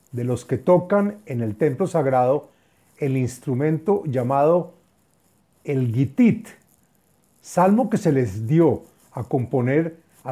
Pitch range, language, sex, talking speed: 130-180 Hz, Spanish, male, 120 wpm